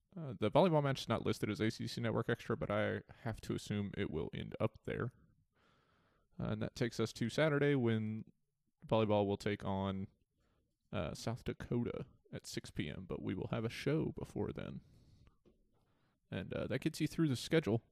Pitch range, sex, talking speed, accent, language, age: 100-130 Hz, male, 190 wpm, American, English, 20-39